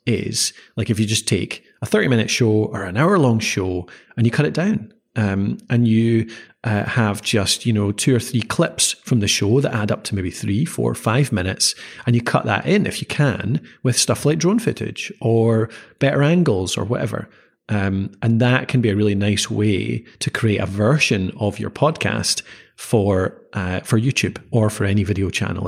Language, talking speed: English, 205 wpm